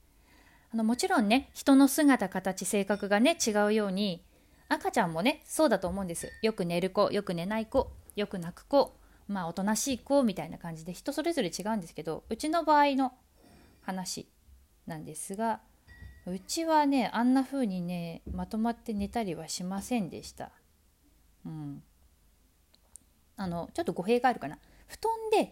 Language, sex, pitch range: Japanese, female, 160-235 Hz